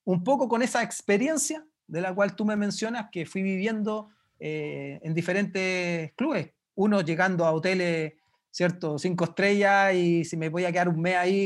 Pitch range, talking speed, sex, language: 155-200 Hz, 180 wpm, male, Spanish